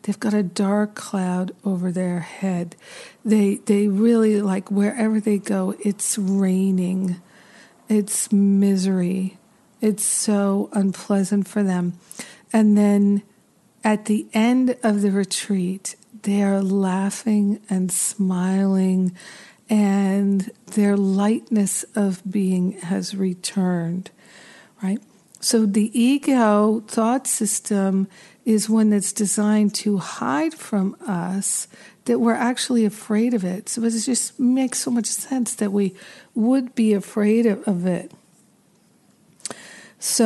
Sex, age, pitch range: female, 50-69, 195-225 Hz